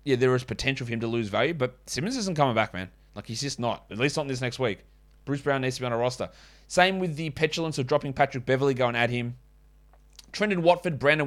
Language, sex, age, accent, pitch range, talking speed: English, male, 20-39, Australian, 115-150 Hz, 255 wpm